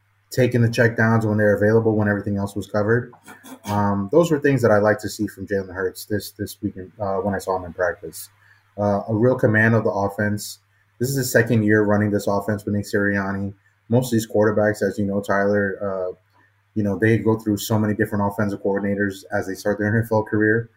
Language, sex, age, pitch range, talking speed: English, male, 20-39, 100-115 Hz, 220 wpm